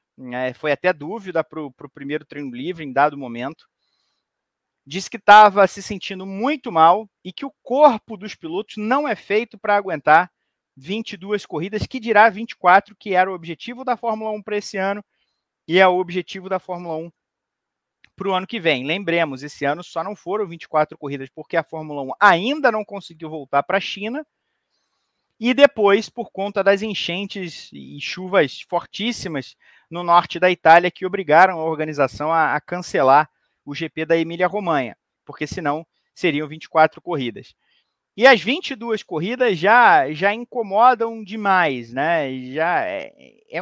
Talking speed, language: 160 wpm, Portuguese